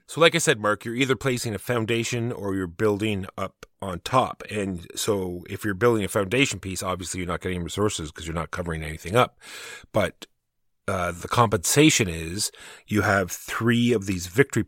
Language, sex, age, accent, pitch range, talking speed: English, male, 30-49, American, 90-115 Hz, 190 wpm